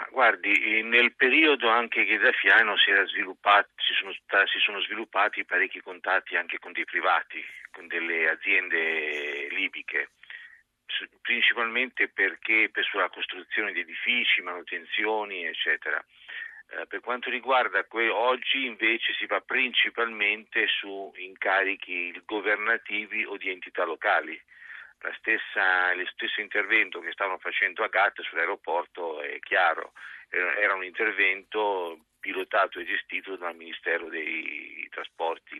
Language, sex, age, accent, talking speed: Italian, male, 50-69, native, 125 wpm